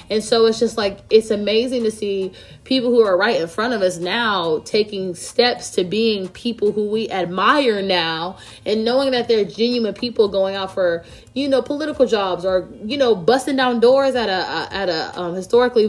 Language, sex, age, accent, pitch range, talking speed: English, female, 20-39, American, 185-245 Hz, 200 wpm